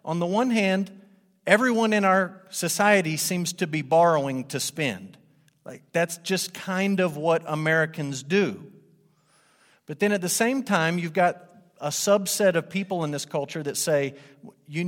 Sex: male